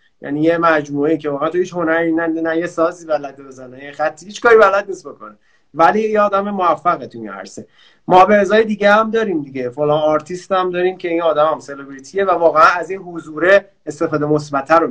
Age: 30-49